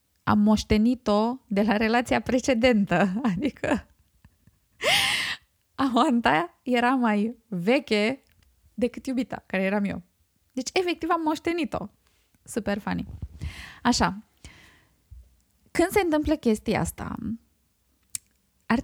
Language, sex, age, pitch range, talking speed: Romanian, female, 20-39, 215-310 Hz, 90 wpm